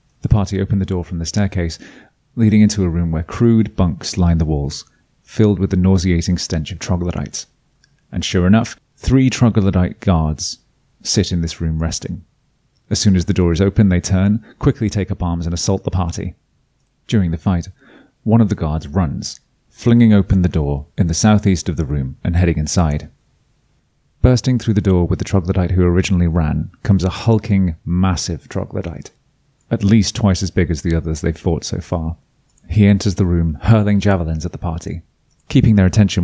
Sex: male